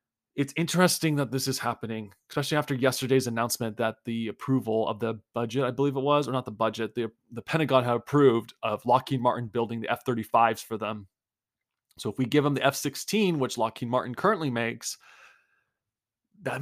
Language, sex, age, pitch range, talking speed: English, male, 20-39, 115-140 Hz, 180 wpm